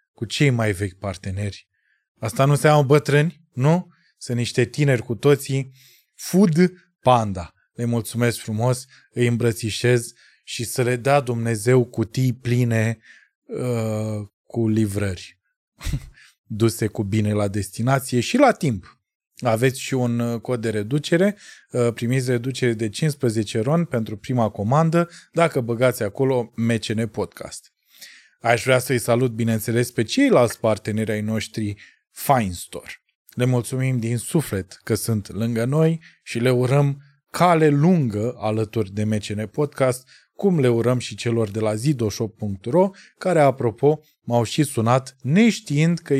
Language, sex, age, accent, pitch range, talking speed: Romanian, male, 20-39, native, 115-140 Hz, 135 wpm